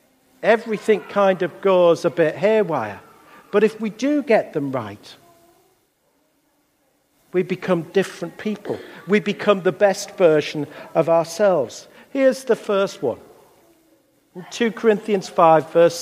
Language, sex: English, male